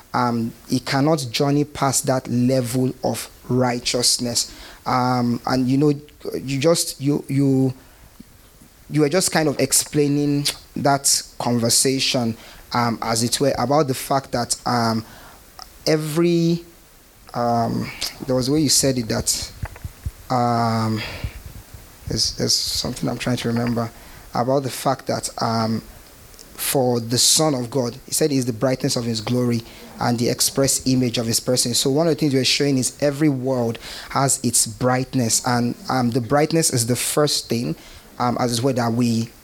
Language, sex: English, male